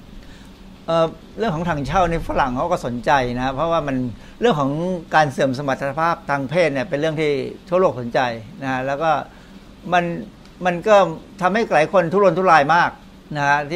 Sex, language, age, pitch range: male, Thai, 60-79, 135-165 Hz